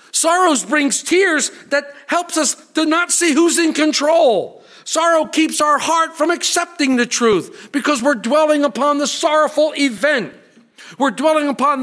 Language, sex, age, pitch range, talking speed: English, male, 50-69, 220-300 Hz, 150 wpm